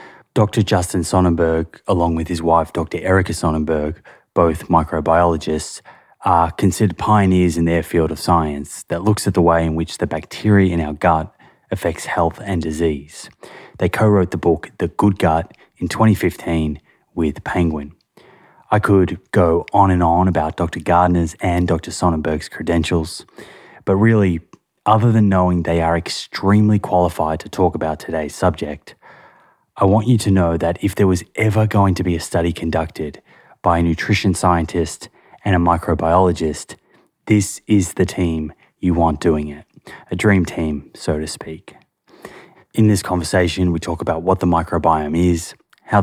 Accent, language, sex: Australian, English, male